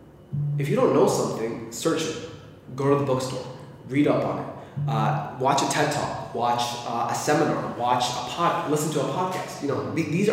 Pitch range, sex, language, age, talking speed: 120-145 Hz, male, English, 20-39, 200 wpm